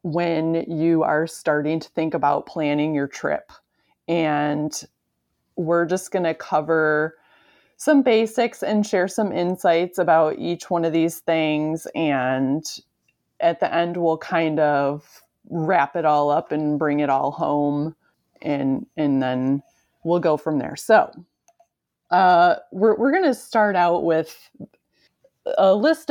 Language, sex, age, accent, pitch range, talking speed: English, female, 30-49, American, 150-175 Hz, 140 wpm